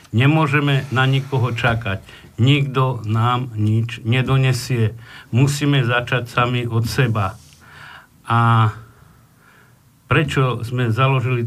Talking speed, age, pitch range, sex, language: 90 wpm, 60-79, 120-140 Hz, male, English